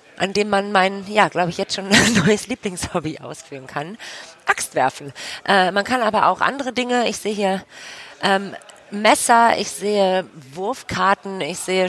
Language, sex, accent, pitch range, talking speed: German, female, German, 165-205 Hz, 155 wpm